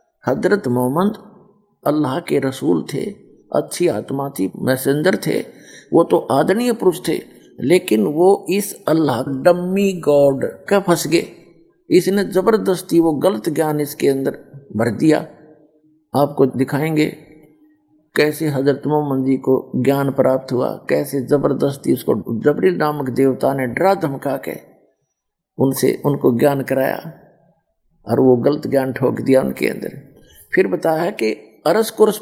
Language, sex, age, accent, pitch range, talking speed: Hindi, male, 50-69, native, 140-180 Hz, 130 wpm